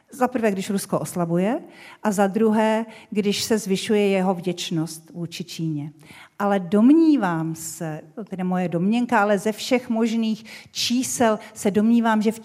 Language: Czech